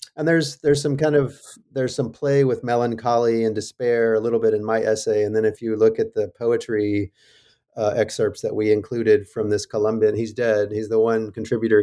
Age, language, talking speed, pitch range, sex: 30-49, English, 210 wpm, 105-125 Hz, male